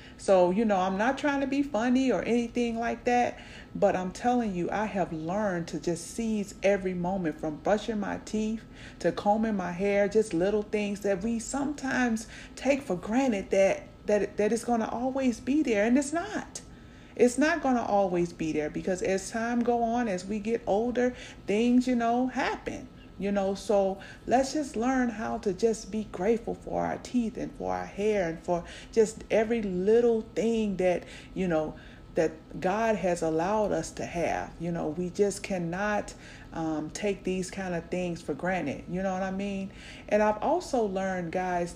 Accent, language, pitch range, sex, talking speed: American, English, 185-230 Hz, female, 190 wpm